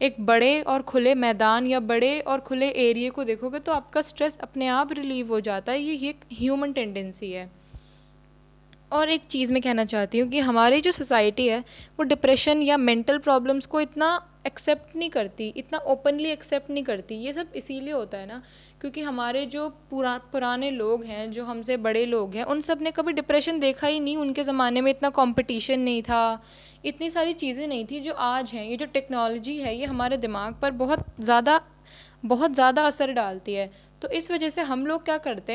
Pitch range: 235-295 Hz